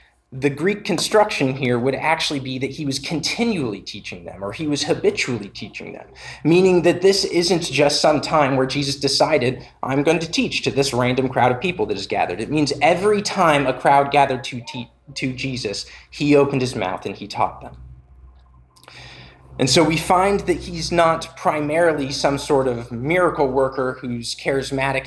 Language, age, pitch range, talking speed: English, 20-39, 125-150 Hz, 180 wpm